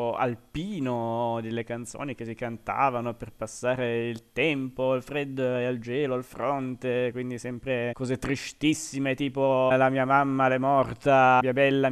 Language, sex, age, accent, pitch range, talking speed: Italian, male, 20-39, native, 120-140 Hz, 145 wpm